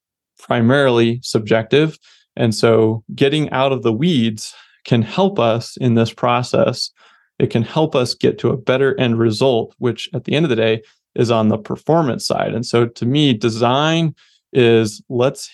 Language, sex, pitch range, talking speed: English, male, 115-140 Hz, 170 wpm